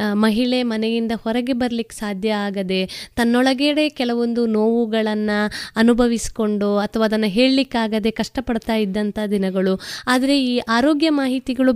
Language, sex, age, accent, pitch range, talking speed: Kannada, female, 20-39, native, 210-275 Hz, 100 wpm